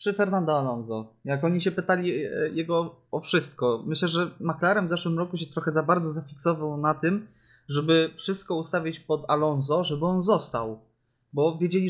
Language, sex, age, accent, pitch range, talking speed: Polish, male, 20-39, native, 130-175 Hz, 165 wpm